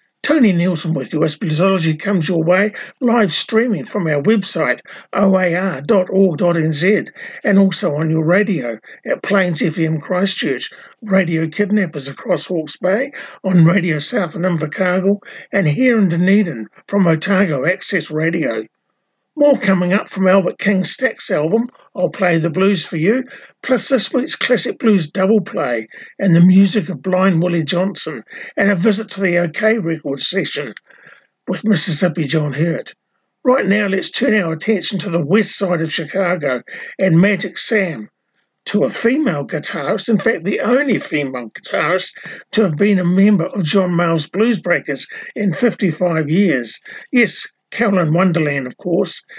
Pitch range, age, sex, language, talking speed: 170-210 Hz, 50-69, male, English, 150 wpm